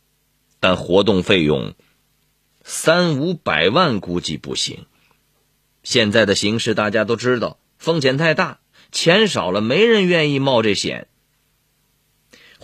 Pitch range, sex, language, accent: 110-150 Hz, male, Chinese, native